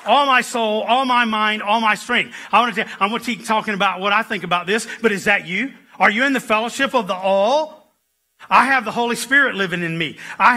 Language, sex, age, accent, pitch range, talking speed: English, male, 40-59, American, 210-265 Hz, 255 wpm